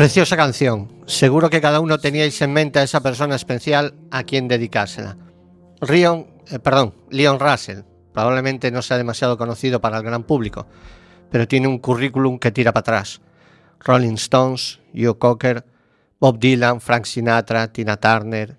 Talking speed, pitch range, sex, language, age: 150 wpm, 115-145 Hz, male, Spanish, 50-69